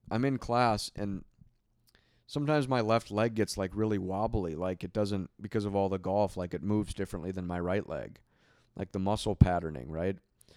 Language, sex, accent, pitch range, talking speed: English, male, American, 100-120 Hz, 185 wpm